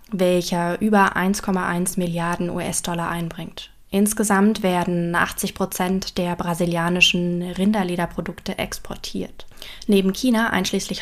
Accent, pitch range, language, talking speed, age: German, 180-210 Hz, German, 95 wpm, 20-39